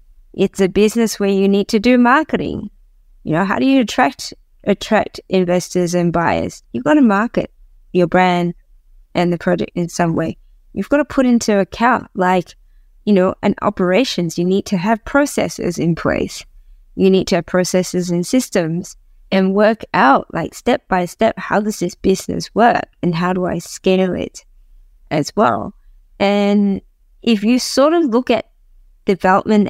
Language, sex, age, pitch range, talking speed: English, female, 20-39, 180-220 Hz, 170 wpm